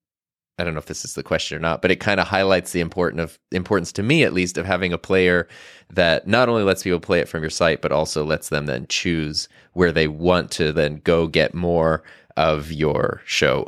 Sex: male